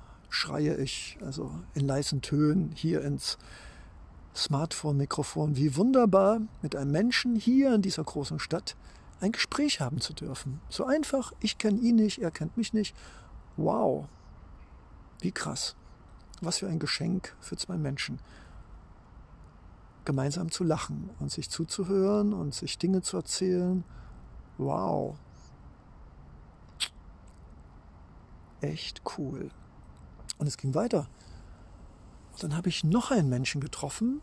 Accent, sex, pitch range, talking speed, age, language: German, male, 140-210 Hz, 120 wpm, 60-79, German